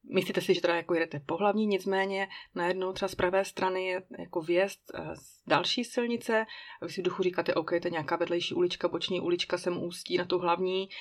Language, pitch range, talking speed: Czech, 175-190 Hz, 205 wpm